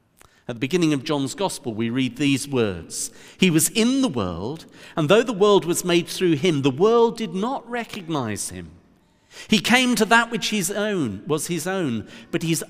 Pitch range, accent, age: 125-190 Hz, British, 50-69